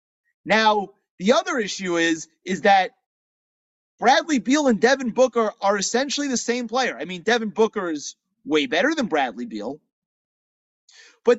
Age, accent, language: 30-49, American, English